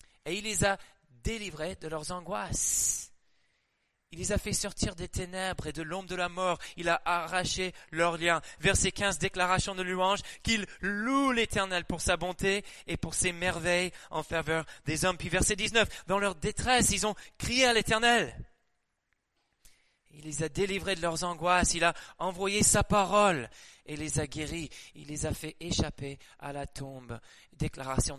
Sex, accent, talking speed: male, French, 170 wpm